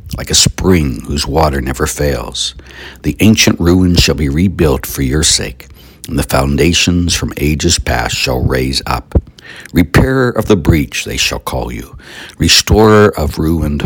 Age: 60-79